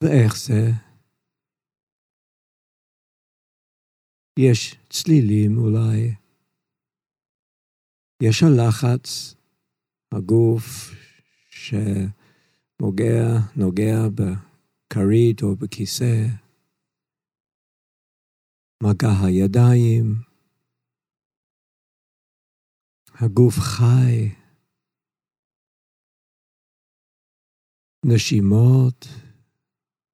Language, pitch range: Hebrew, 110-130 Hz